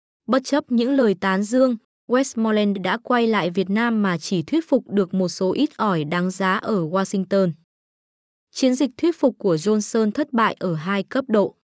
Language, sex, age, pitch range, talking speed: Vietnamese, female, 20-39, 190-245 Hz, 190 wpm